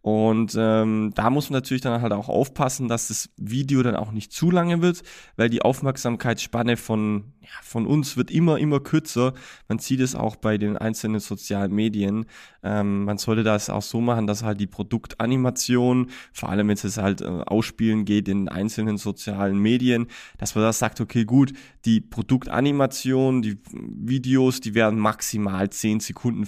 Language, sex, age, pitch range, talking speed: German, male, 20-39, 105-120 Hz, 170 wpm